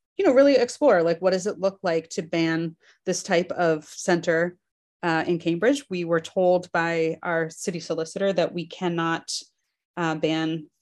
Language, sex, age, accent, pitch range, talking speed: English, female, 30-49, American, 160-185 Hz, 170 wpm